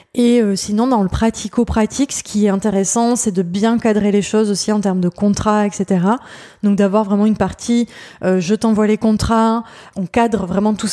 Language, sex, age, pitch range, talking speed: French, female, 20-39, 200-235 Hz, 205 wpm